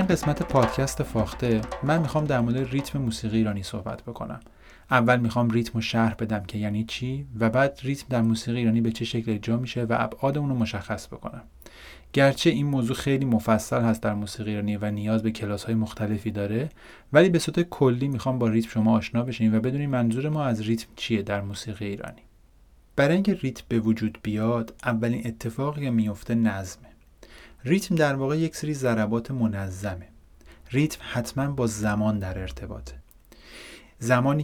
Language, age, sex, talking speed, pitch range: Persian, 30-49, male, 175 wpm, 110-135 Hz